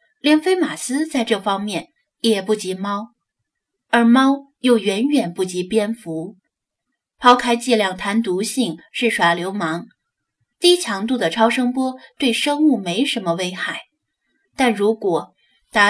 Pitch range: 190-270 Hz